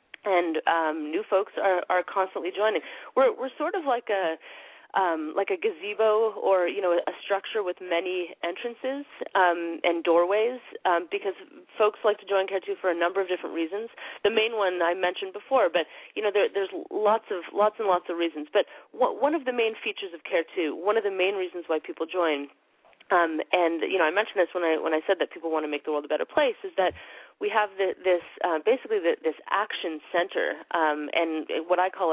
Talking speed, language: 220 wpm, English